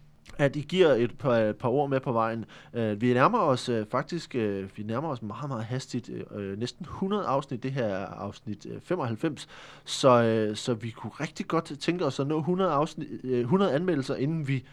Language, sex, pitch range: Danish, male, 110-145 Hz